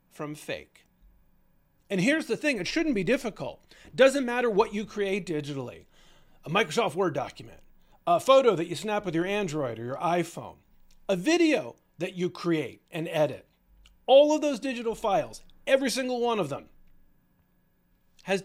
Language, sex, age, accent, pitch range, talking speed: English, male, 40-59, American, 135-200 Hz, 160 wpm